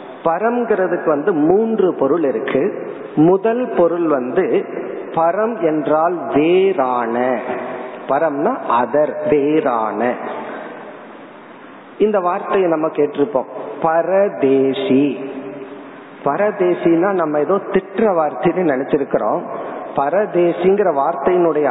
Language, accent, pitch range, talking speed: Tamil, native, 145-215 Hz, 60 wpm